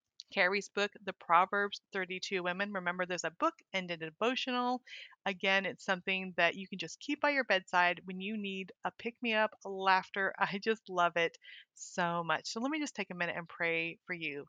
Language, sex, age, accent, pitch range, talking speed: English, female, 30-49, American, 180-220 Hz, 195 wpm